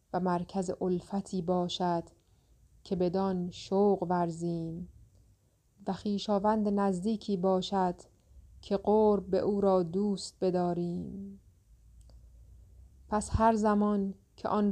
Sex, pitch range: female, 180-195 Hz